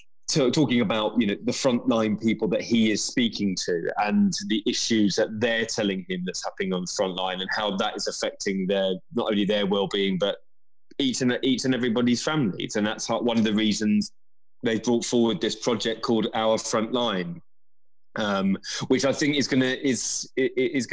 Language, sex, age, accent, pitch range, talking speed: English, male, 20-39, British, 100-120 Hz, 180 wpm